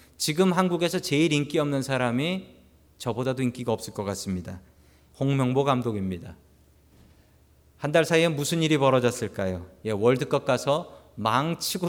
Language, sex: Korean, male